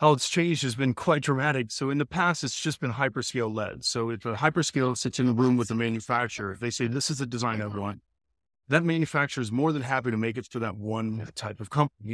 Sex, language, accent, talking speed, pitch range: male, English, American, 250 wpm, 115-145 Hz